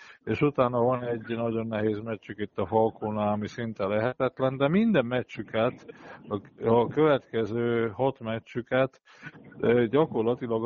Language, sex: Hungarian, male